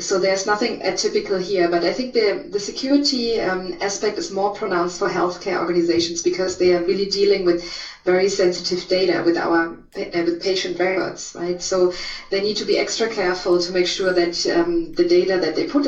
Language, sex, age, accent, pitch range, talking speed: English, female, 20-39, German, 175-275 Hz, 195 wpm